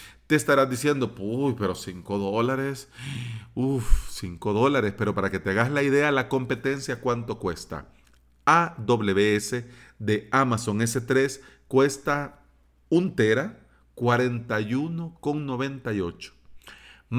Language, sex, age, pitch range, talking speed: Spanish, male, 40-59, 100-140 Hz, 100 wpm